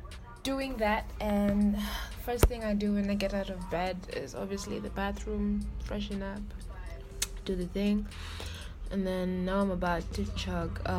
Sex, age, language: female, 20-39, English